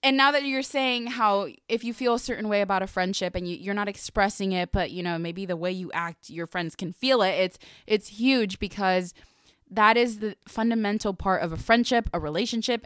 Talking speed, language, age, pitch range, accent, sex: 220 wpm, English, 20-39, 180-230 Hz, American, female